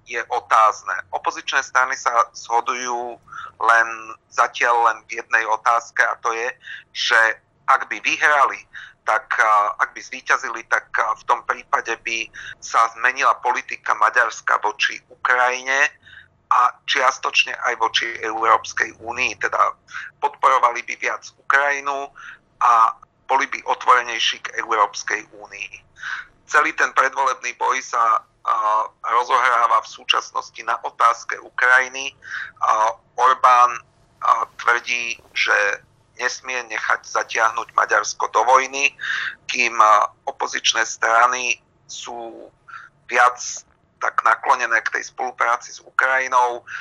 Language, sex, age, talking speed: Slovak, male, 40-59, 115 wpm